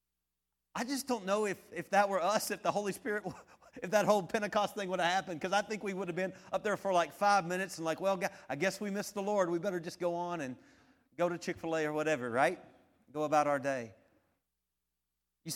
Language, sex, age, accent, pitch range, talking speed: English, male, 40-59, American, 130-200 Hz, 235 wpm